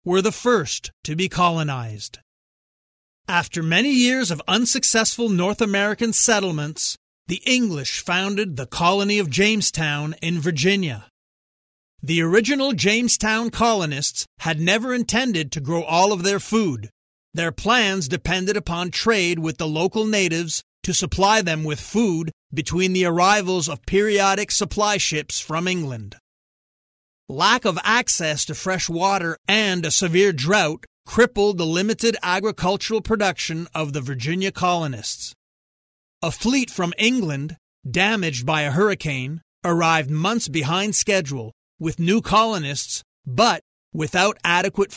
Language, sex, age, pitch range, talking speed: English, male, 40-59, 155-210 Hz, 130 wpm